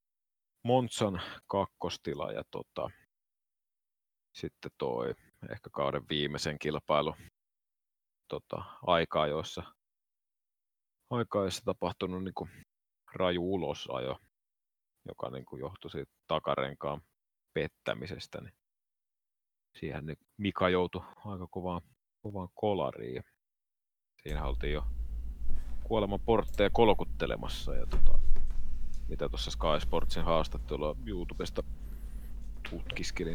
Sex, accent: male, native